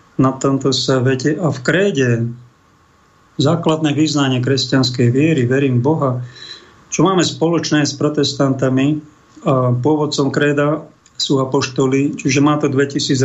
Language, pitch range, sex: Slovak, 130-165 Hz, male